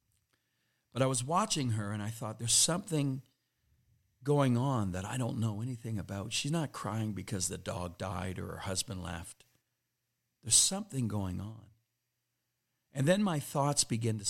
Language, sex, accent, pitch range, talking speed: English, male, American, 95-130 Hz, 165 wpm